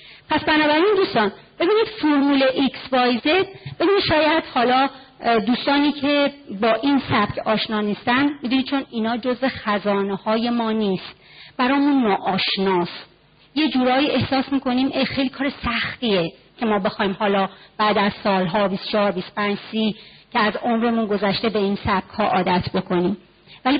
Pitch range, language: 205-280 Hz, Persian